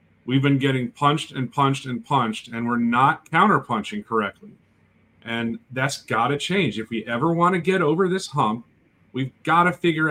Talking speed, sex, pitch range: 185 wpm, male, 120-155 Hz